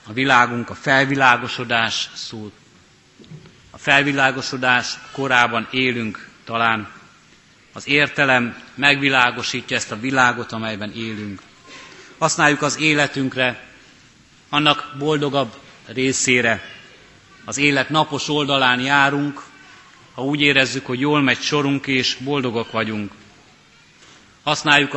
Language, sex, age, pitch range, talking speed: Hungarian, male, 30-49, 120-145 Hz, 95 wpm